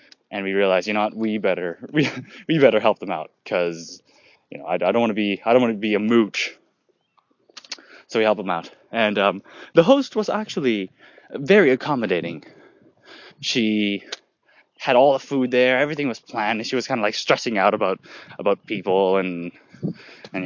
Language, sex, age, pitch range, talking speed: English, male, 20-39, 100-130 Hz, 185 wpm